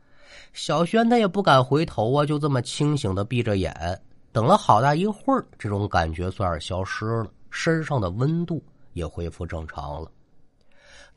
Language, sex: Chinese, male